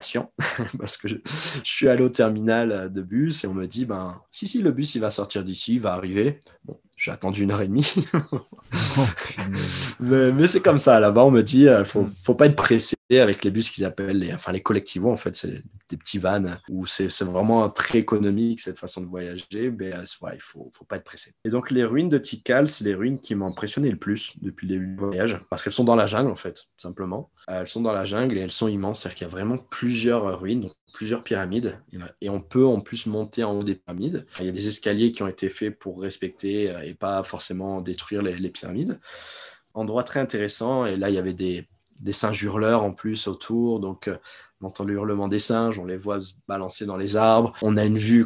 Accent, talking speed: French, 235 wpm